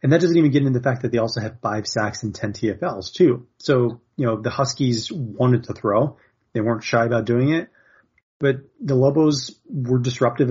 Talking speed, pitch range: 210 wpm, 110-130 Hz